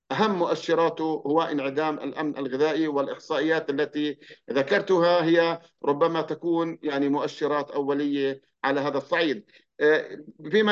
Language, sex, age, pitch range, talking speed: English, male, 50-69, 155-195 Hz, 105 wpm